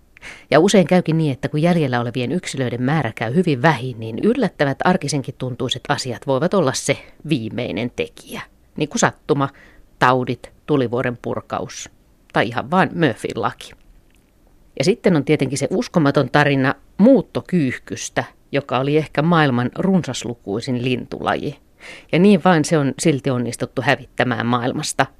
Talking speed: 135 wpm